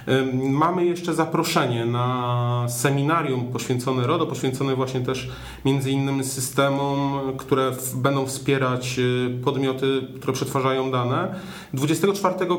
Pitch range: 130-155 Hz